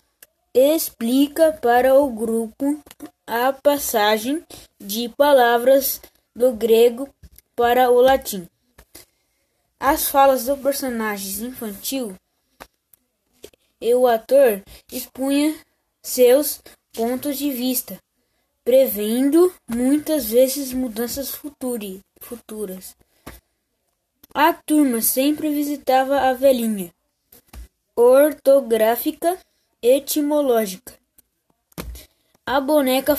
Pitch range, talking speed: 235-280 Hz, 75 wpm